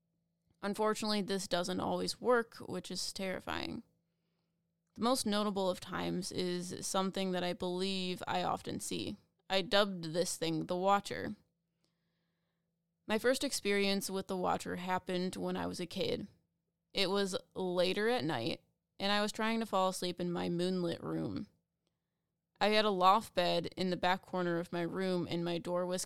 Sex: female